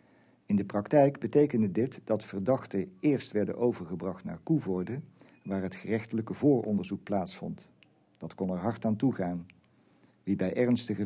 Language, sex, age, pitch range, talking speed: Dutch, male, 50-69, 100-120 Hz, 140 wpm